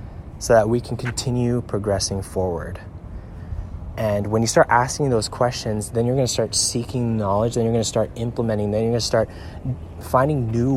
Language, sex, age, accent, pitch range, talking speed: English, male, 20-39, American, 95-120 Hz, 190 wpm